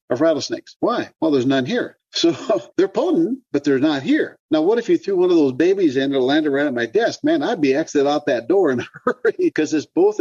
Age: 50-69